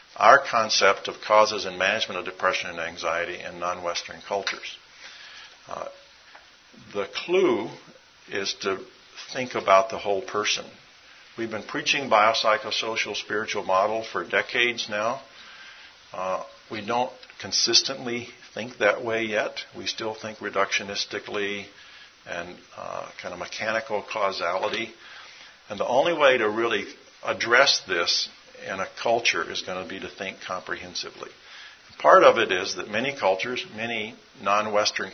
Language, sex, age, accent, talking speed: English, male, 50-69, American, 130 wpm